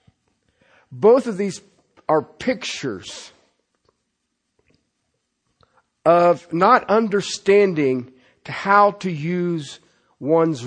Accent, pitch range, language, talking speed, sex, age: American, 145-210 Hz, English, 65 wpm, male, 50-69